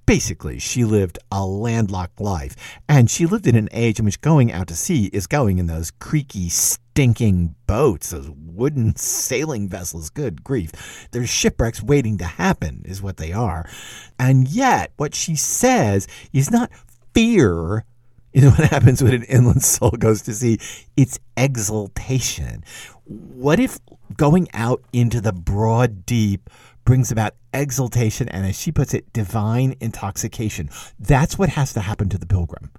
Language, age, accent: English, 50-69, American